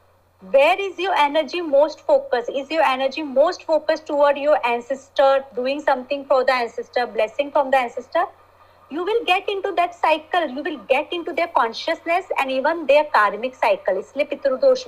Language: Hindi